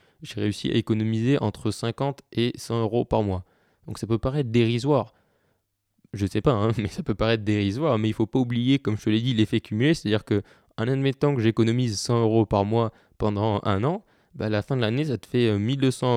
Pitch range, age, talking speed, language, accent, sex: 105-130 Hz, 20-39, 235 wpm, French, French, male